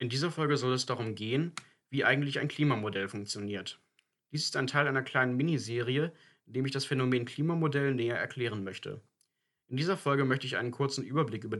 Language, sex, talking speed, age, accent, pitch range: German, male, 190 wpm, 30-49, German, 120-140 Hz